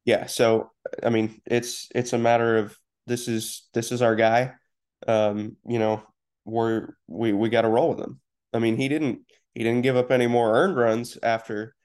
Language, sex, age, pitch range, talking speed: English, male, 20-39, 110-125 Hz, 190 wpm